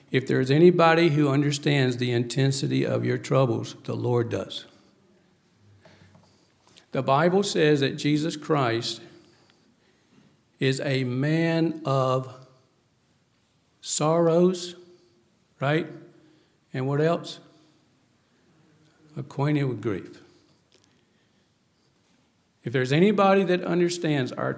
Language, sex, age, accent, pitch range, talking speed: English, male, 60-79, American, 130-170 Hz, 90 wpm